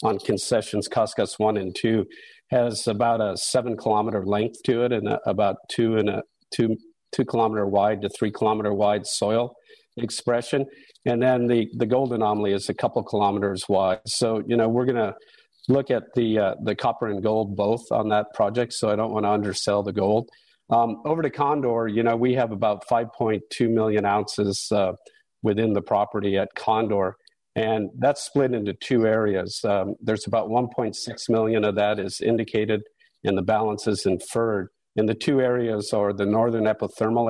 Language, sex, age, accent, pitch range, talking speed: English, male, 50-69, American, 105-120 Hz, 190 wpm